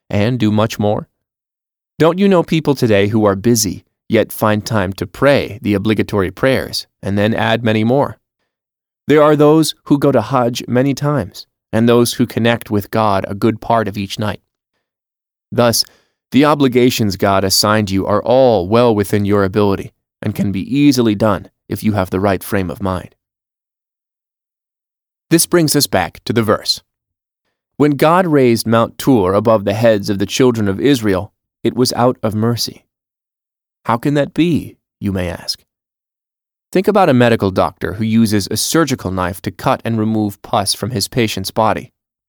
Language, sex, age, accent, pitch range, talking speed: English, male, 20-39, American, 100-125 Hz, 175 wpm